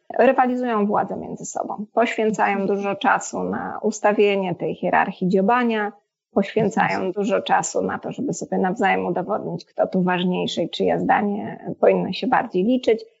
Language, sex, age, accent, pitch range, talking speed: Polish, female, 20-39, native, 200-230 Hz, 140 wpm